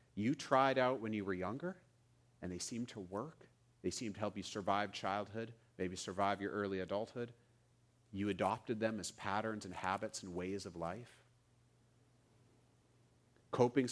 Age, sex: 40-59, male